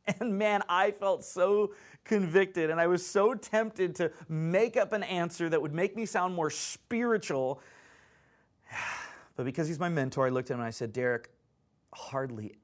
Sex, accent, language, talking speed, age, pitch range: male, American, English, 175 wpm, 30-49, 160-210 Hz